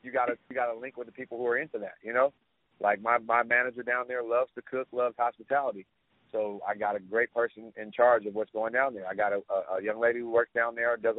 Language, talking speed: English, 265 wpm